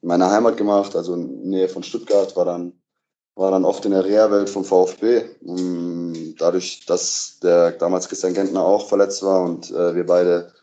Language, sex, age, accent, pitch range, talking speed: German, male, 20-39, German, 90-100 Hz, 200 wpm